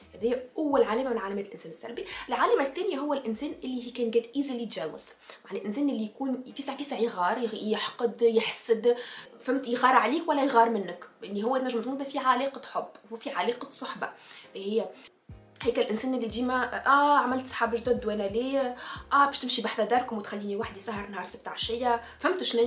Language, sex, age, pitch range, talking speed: Arabic, female, 20-39, 220-255 Hz, 180 wpm